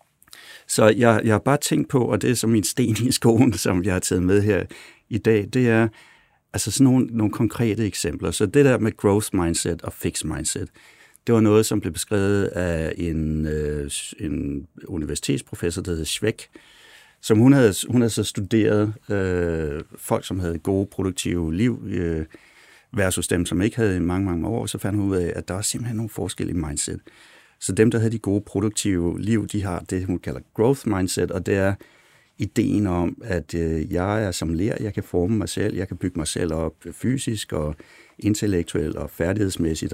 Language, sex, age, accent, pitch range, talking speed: Danish, male, 60-79, native, 90-110 Hz, 195 wpm